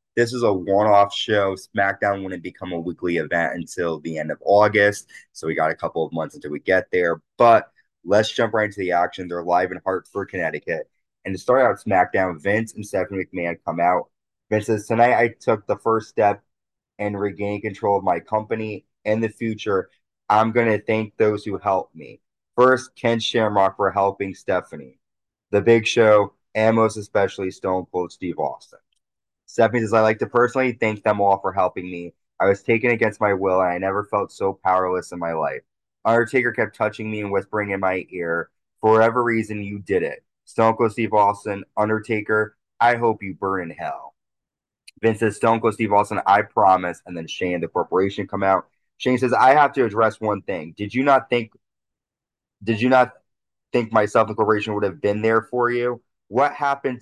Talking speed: 195 wpm